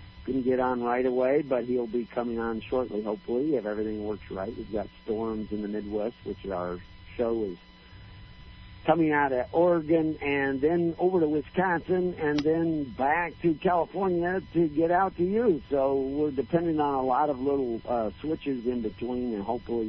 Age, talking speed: 50-69, 180 wpm